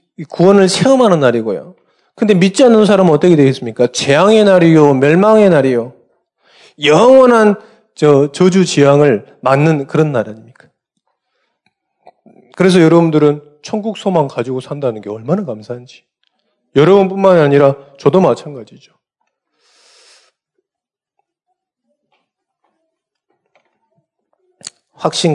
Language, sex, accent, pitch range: Korean, male, native, 150-200 Hz